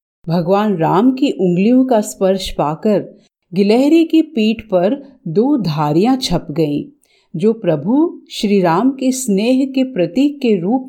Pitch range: 175-265 Hz